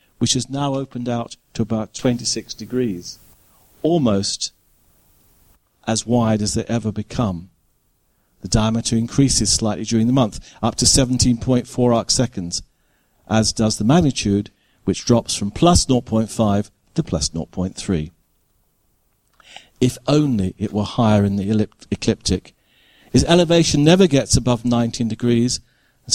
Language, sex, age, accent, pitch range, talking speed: English, male, 50-69, British, 100-130 Hz, 130 wpm